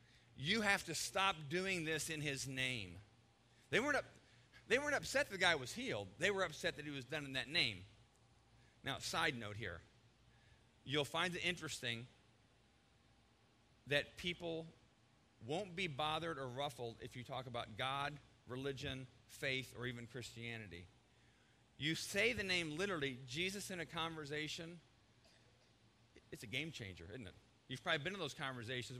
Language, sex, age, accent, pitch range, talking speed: English, male, 40-59, American, 115-160 Hz, 155 wpm